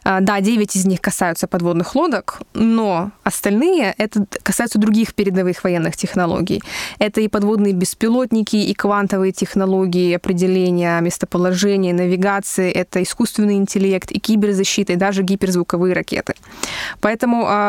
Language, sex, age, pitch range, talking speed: Russian, female, 20-39, 185-215 Hz, 120 wpm